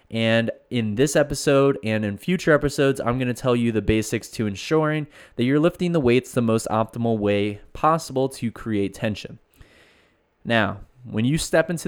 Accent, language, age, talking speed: American, English, 20-39, 170 wpm